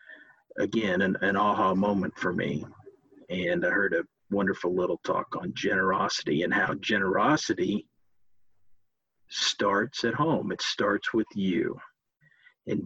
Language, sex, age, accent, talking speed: English, male, 50-69, American, 125 wpm